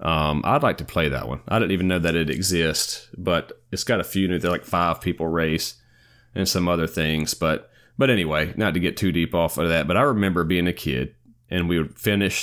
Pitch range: 80-105 Hz